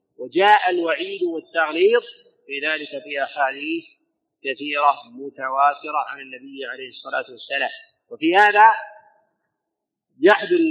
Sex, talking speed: male, 95 wpm